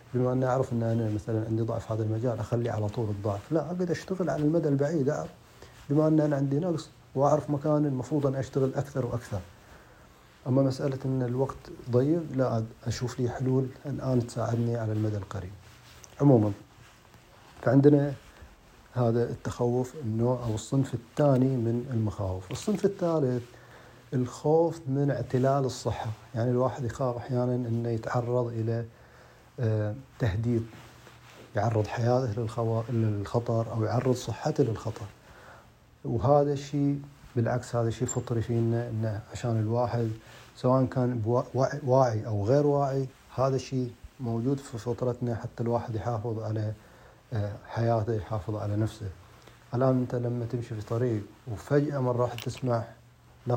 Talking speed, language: 135 wpm, Arabic